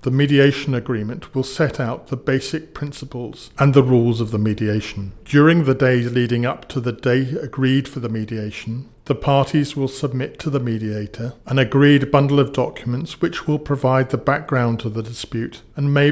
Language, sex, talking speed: English, male, 180 wpm